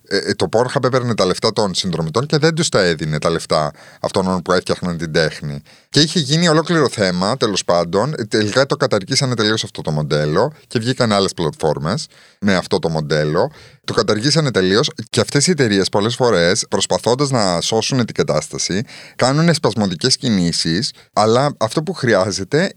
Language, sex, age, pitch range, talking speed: Greek, male, 30-49, 110-160 Hz, 165 wpm